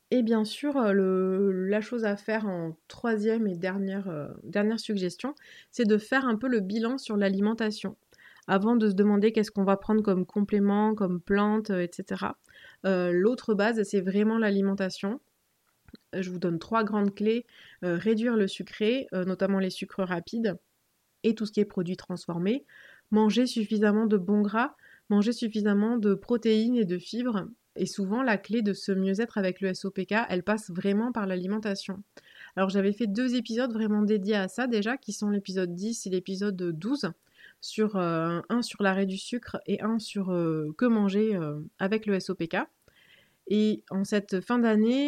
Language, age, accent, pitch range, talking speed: French, 20-39, French, 190-225 Hz, 170 wpm